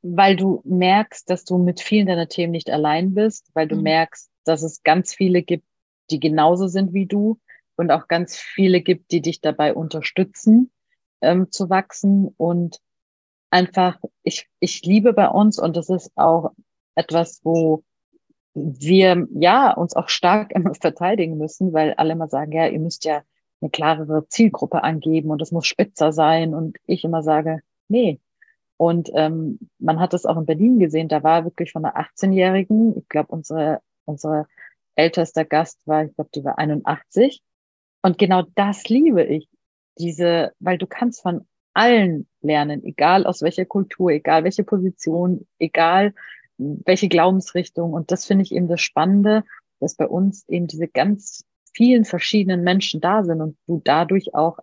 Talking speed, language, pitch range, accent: 165 wpm, German, 160-195 Hz, German